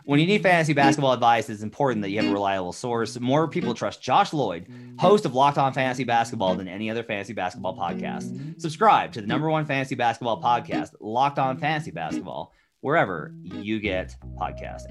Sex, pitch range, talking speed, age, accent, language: male, 95-140 Hz, 190 wpm, 30-49, American, English